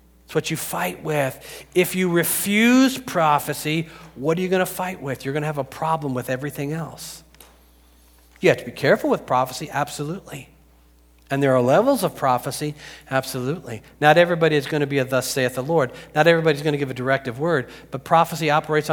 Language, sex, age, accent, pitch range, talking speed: English, male, 40-59, American, 95-145 Hz, 185 wpm